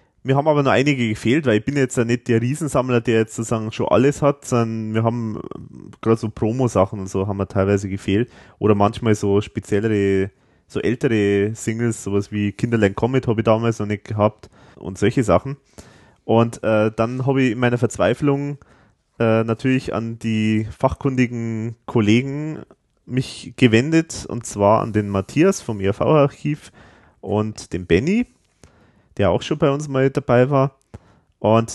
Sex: male